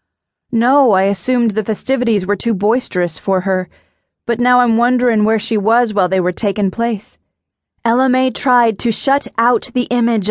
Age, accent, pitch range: 30-49, American, 205-250 Hz